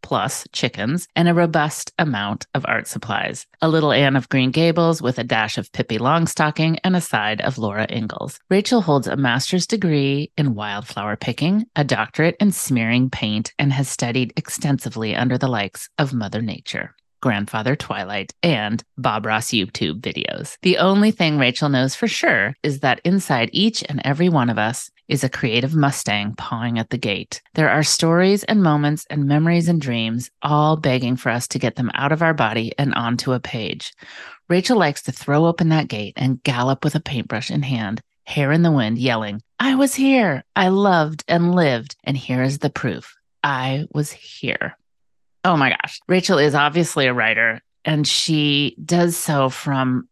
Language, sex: English, female